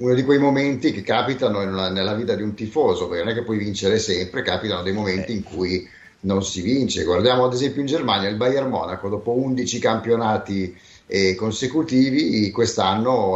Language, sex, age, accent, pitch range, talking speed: Italian, male, 30-49, native, 95-135 Hz, 175 wpm